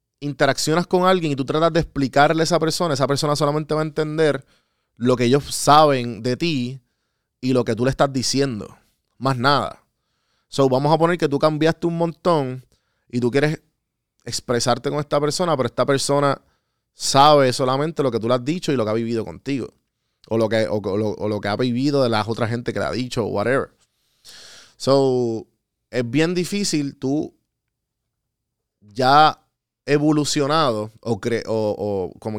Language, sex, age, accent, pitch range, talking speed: Spanish, male, 30-49, Venezuelan, 115-150 Hz, 170 wpm